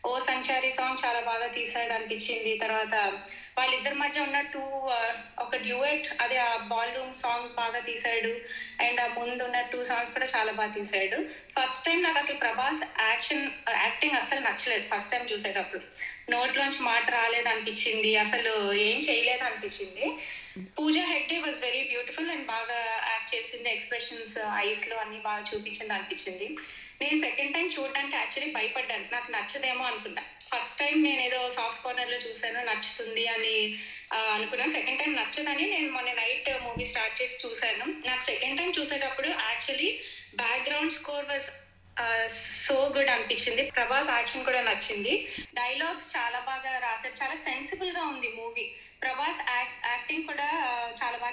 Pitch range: 230-280 Hz